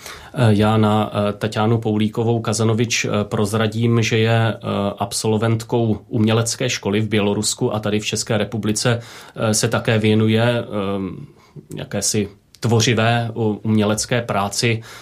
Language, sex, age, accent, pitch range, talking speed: Czech, male, 30-49, native, 105-120 Hz, 100 wpm